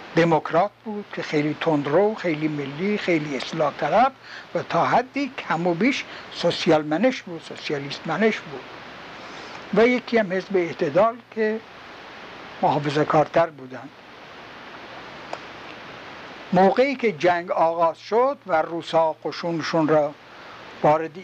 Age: 60-79